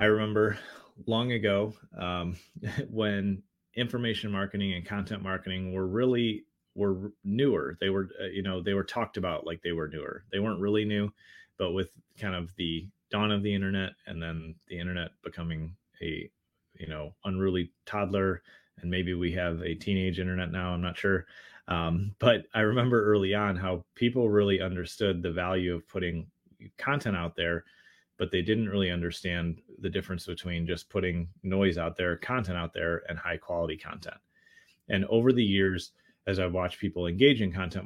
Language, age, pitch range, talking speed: English, 30-49, 90-105 Hz, 175 wpm